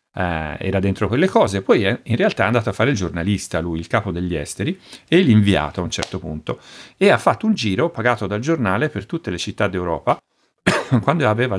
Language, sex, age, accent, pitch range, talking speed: Italian, male, 40-59, native, 90-120 Hz, 200 wpm